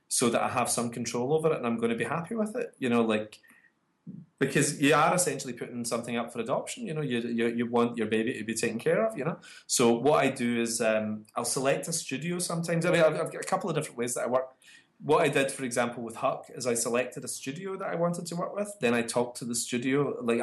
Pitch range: 120-155 Hz